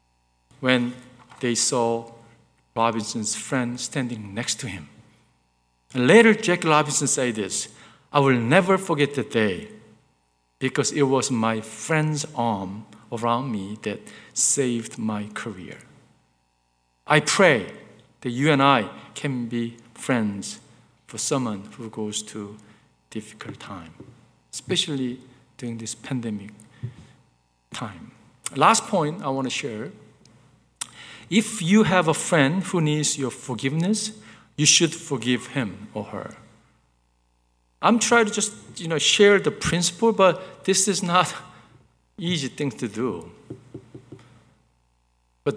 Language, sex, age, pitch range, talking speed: English, male, 50-69, 110-150 Hz, 120 wpm